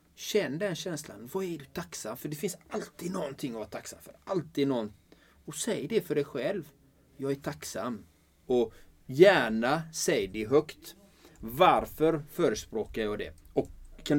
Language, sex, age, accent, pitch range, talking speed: Swedish, male, 30-49, native, 125-185 Hz, 160 wpm